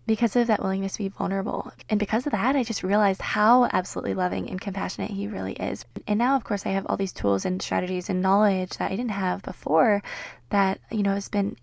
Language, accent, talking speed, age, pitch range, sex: English, American, 230 wpm, 20-39, 185-215 Hz, female